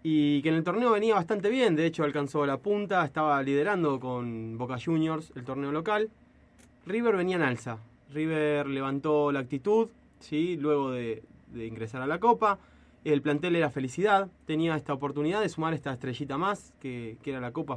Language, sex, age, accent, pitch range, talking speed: Spanish, male, 20-39, Argentinian, 140-185 Hz, 180 wpm